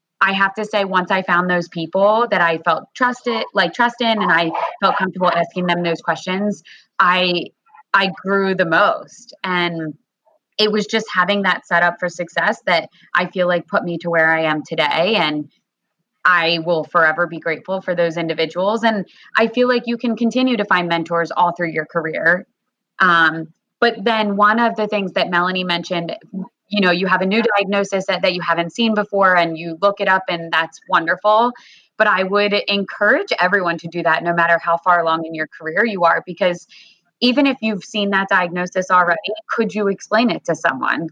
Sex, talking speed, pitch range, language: female, 195 wpm, 170-210 Hz, English